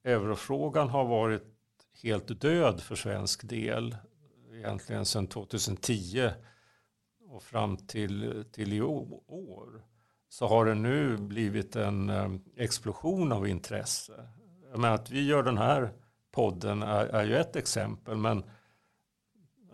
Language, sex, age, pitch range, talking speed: Swedish, male, 50-69, 105-125 Hz, 120 wpm